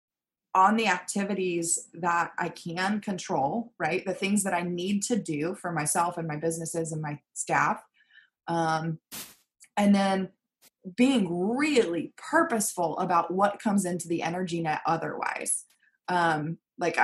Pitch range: 170-225 Hz